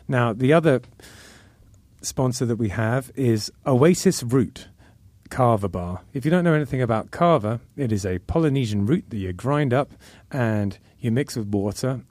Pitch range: 110-135 Hz